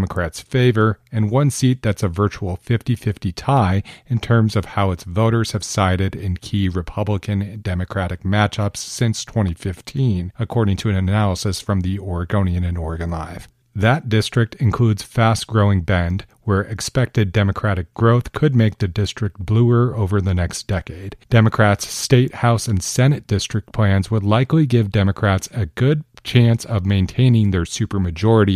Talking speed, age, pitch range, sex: 145 wpm, 40-59, 95-115 Hz, male